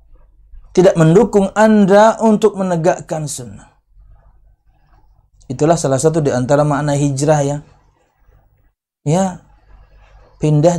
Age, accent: 30-49, native